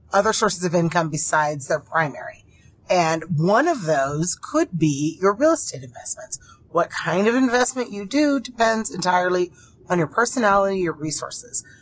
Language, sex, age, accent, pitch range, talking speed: English, female, 30-49, American, 150-190 Hz, 150 wpm